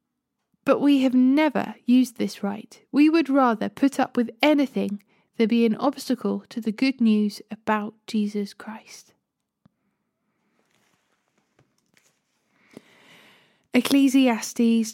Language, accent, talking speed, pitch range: English, British, 105 wpm, 215-270 Hz